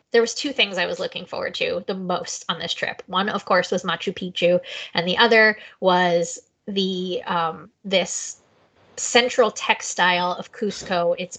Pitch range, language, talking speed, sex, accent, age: 180-230 Hz, English, 170 wpm, female, American, 20-39